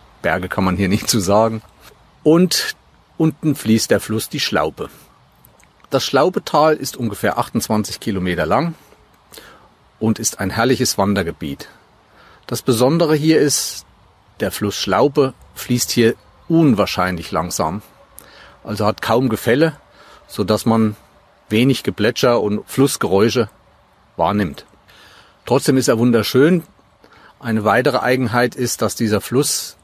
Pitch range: 105-130 Hz